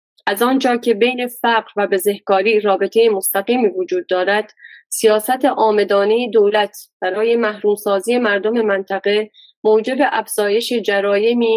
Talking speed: 110 wpm